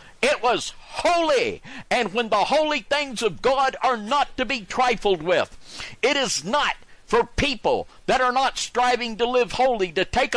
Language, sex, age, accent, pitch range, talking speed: English, male, 60-79, American, 170-255 Hz, 175 wpm